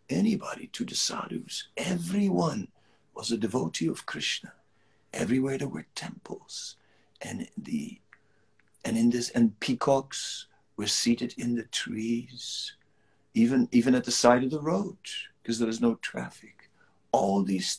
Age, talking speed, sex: 60-79, 140 wpm, male